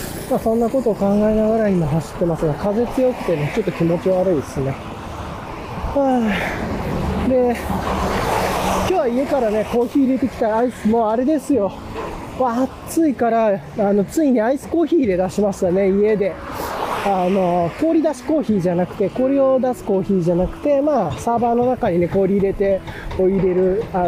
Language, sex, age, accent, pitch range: Japanese, male, 20-39, native, 175-240 Hz